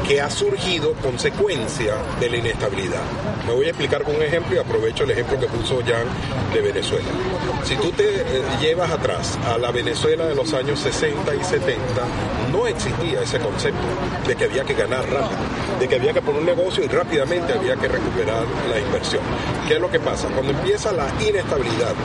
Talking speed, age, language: 190 wpm, 40-59, Spanish